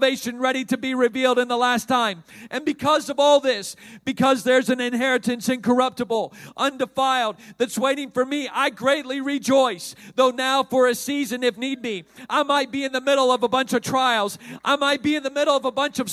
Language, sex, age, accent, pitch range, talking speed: English, male, 40-59, American, 240-270 Hz, 205 wpm